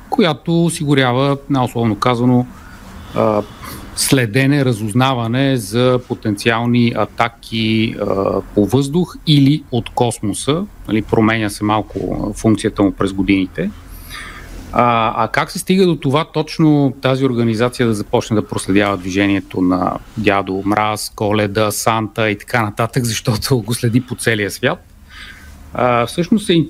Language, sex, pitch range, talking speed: Bulgarian, male, 105-135 Hz, 120 wpm